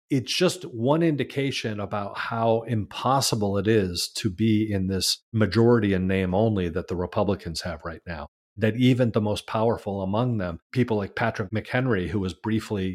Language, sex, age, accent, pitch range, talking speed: English, male, 40-59, American, 95-125 Hz, 170 wpm